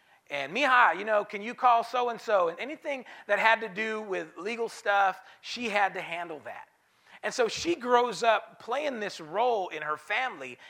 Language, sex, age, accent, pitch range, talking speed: English, male, 40-59, American, 180-240 Hz, 185 wpm